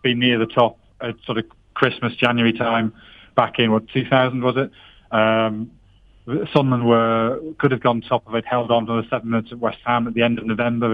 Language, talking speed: English, 210 wpm